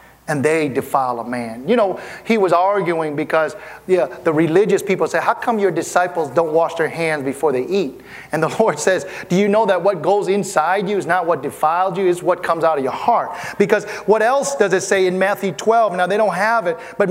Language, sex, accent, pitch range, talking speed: English, male, American, 170-245 Hz, 230 wpm